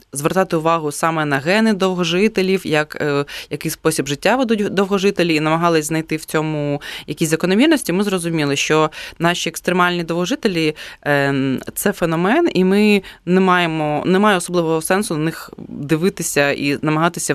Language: Ukrainian